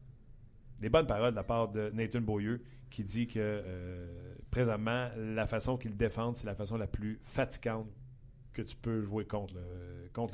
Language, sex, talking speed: French, male, 180 wpm